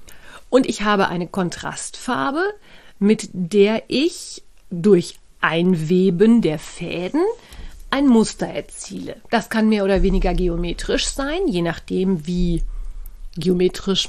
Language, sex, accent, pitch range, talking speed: German, female, German, 180-230 Hz, 110 wpm